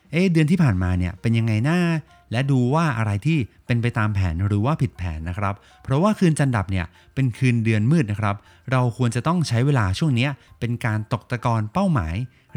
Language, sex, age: Thai, male, 30-49